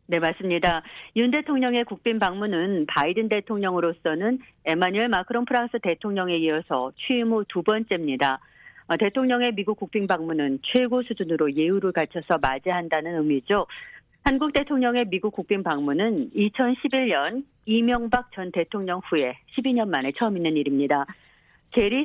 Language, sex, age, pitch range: Korean, female, 40-59, 170-235 Hz